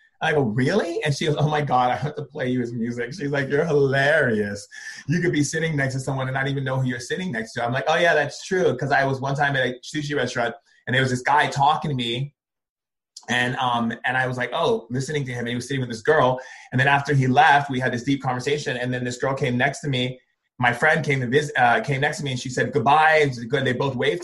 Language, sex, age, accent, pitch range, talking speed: English, male, 30-49, American, 125-150 Hz, 275 wpm